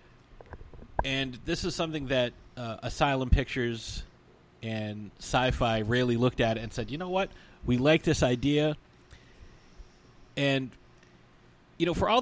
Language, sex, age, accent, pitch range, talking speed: English, male, 30-49, American, 115-150 Hz, 135 wpm